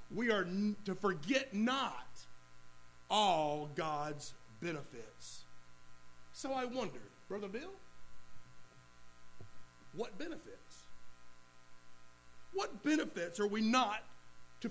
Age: 40-59